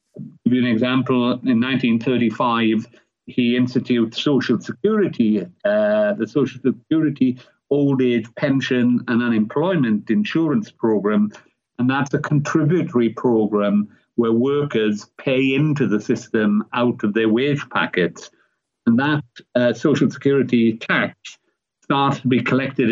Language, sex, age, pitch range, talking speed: English, male, 50-69, 110-145 Hz, 125 wpm